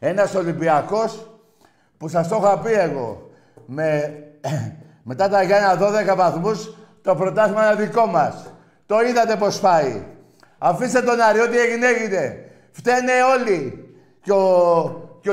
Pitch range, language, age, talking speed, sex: 160-225 Hz, Greek, 50-69, 135 wpm, male